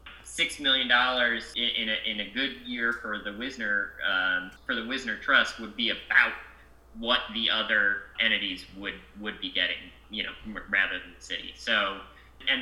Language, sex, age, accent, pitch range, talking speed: English, male, 30-49, American, 100-115 Hz, 165 wpm